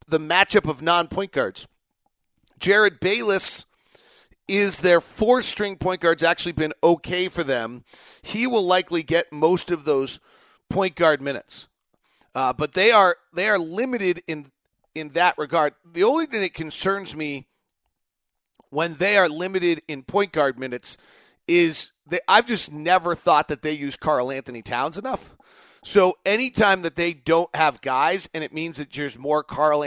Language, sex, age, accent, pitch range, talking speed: English, male, 40-59, American, 150-185 Hz, 160 wpm